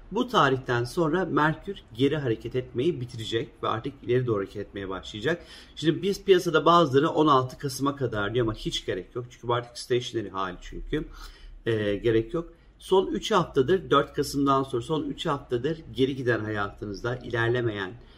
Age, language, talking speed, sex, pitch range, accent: 50-69, Turkish, 160 wpm, male, 110-140 Hz, native